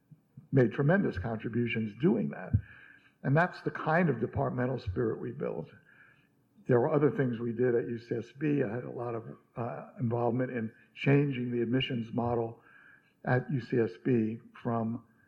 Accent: American